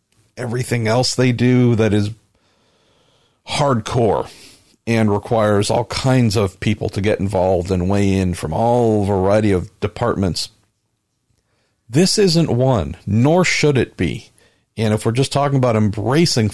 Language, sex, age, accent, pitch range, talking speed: English, male, 50-69, American, 105-130 Hz, 140 wpm